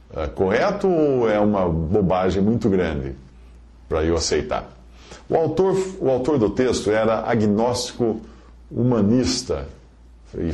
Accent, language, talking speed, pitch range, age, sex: Brazilian, English, 110 wpm, 90-125 Hz, 50-69, male